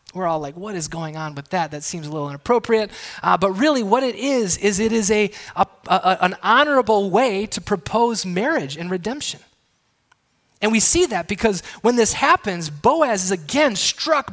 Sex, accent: male, American